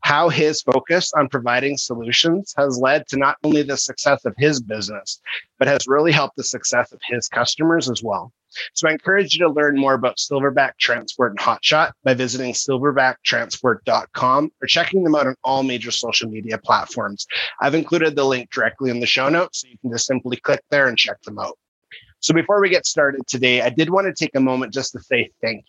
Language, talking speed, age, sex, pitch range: English, 210 wpm, 30-49, male, 125-150 Hz